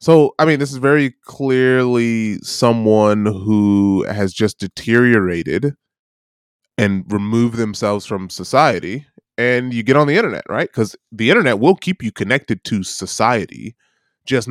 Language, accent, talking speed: English, American, 140 wpm